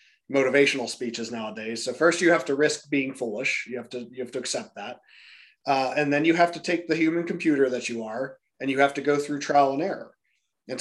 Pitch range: 130-150 Hz